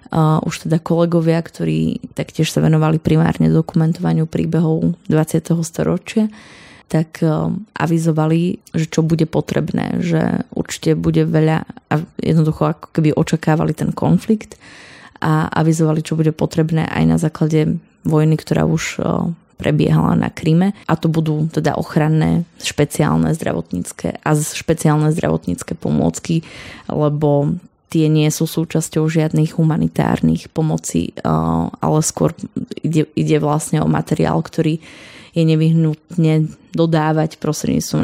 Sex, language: female, Slovak